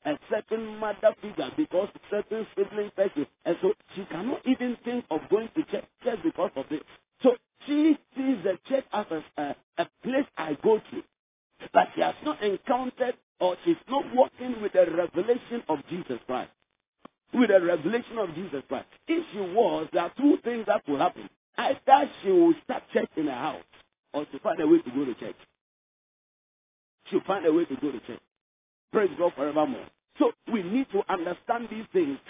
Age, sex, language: 50-69, male, English